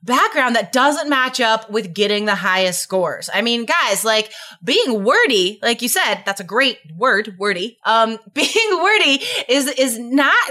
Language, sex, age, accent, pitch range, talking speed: English, female, 20-39, American, 210-270 Hz, 170 wpm